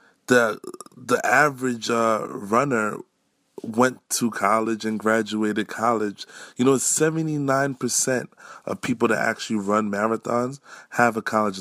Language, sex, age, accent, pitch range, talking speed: English, male, 20-39, American, 100-130 Hz, 120 wpm